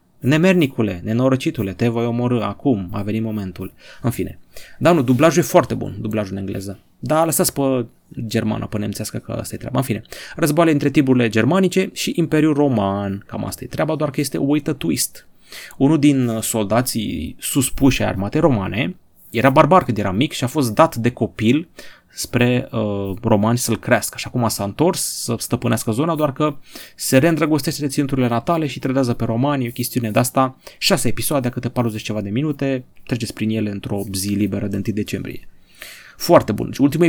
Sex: male